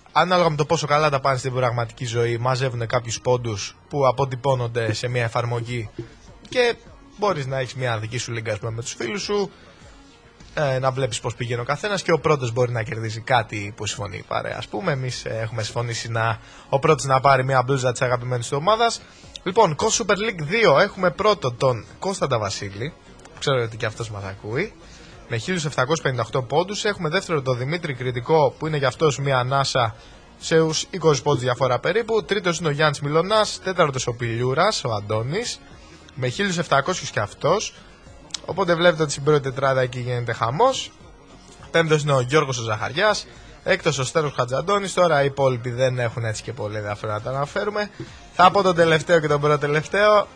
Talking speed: 180 wpm